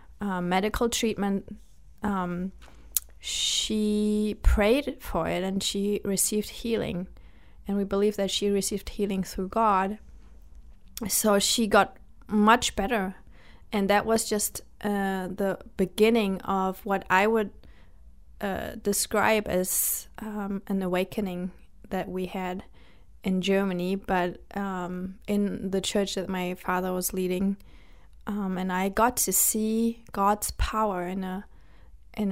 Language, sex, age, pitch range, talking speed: English, female, 20-39, 185-210 Hz, 130 wpm